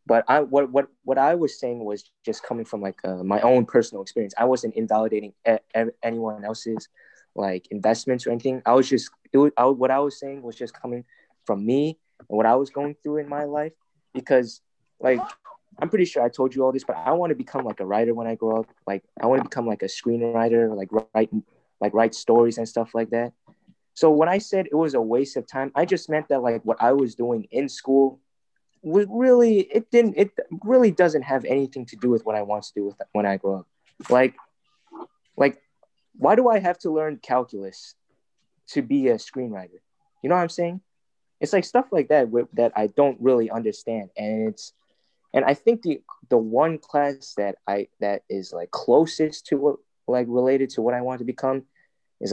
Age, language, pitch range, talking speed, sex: 20-39, English, 115-150 Hz, 215 wpm, male